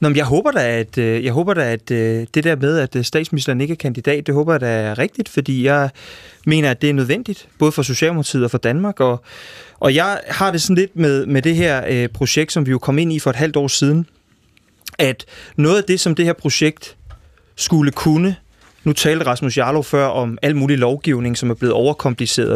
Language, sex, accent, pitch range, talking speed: Danish, male, native, 130-165 Hz, 225 wpm